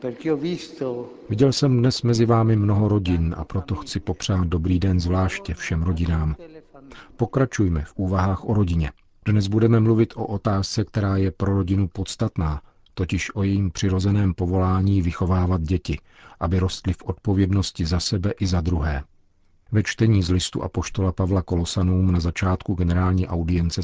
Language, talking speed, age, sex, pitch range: Czech, 145 wpm, 50-69, male, 90-105 Hz